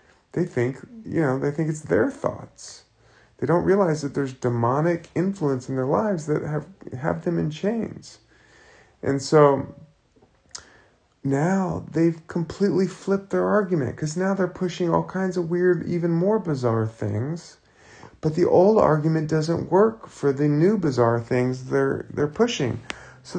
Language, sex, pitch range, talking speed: English, male, 130-180 Hz, 155 wpm